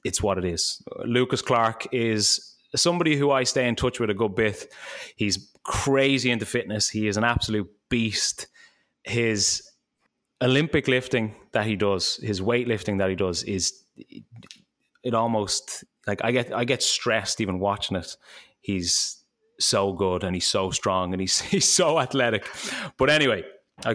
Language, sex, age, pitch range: English, male, 20-39, 100-120 Hz